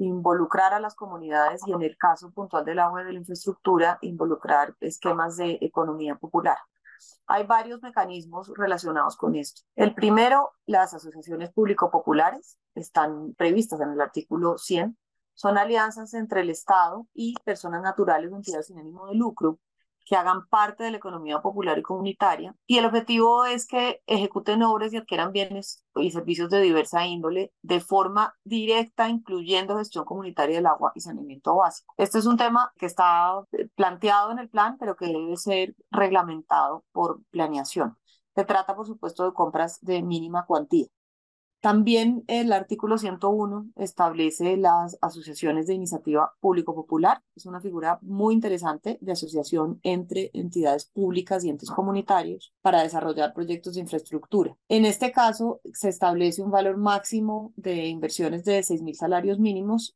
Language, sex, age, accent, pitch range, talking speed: English, female, 30-49, Colombian, 170-210 Hz, 155 wpm